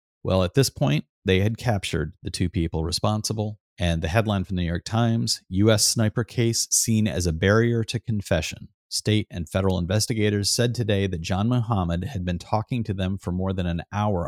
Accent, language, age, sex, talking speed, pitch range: American, English, 30-49, male, 200 wpm, 85-105 Hz